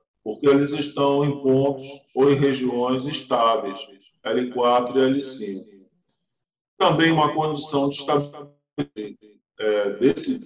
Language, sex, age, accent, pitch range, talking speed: Portuguese, male, 20-39, Brazilian, 125-145 Hz, 110 wpm